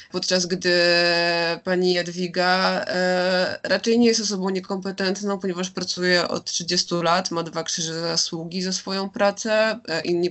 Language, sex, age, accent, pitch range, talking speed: Polish, female, 20-39, native, 170-185 Hz, 140 wpm